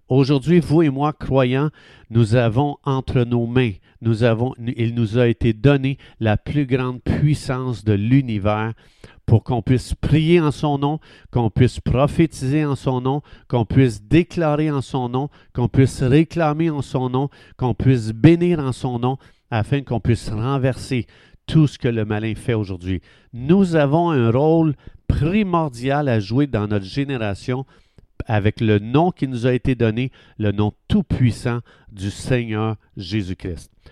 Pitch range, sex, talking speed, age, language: 110-150 Hz, male, 160 wpm, 50-69, French